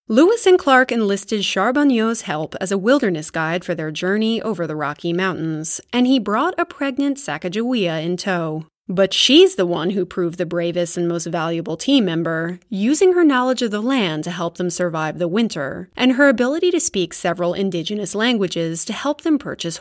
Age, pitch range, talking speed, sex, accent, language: 30-49, 175-275 Hz, 190 wpm, female, American, English